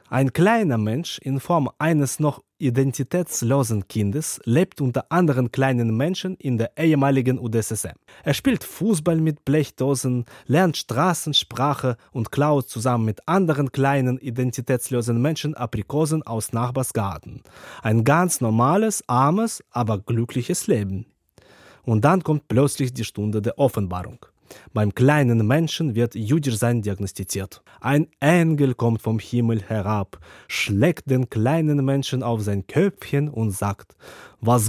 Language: German